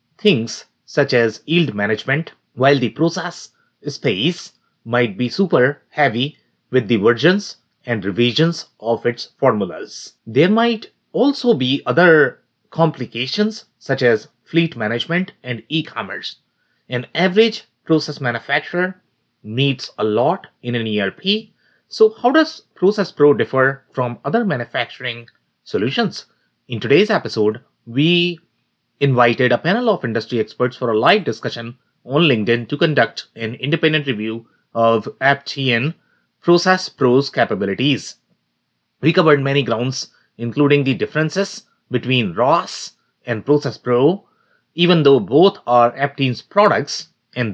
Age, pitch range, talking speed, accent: 30-49, 120-170 Hz, 125 wpm, Indian